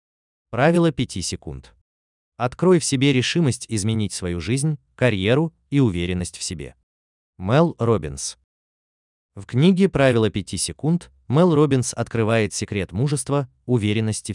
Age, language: 20-39, Russian